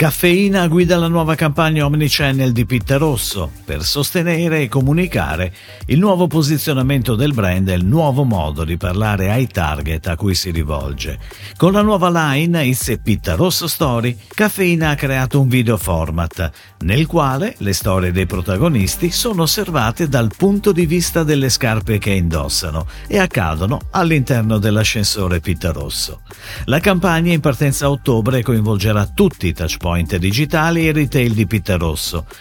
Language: Italian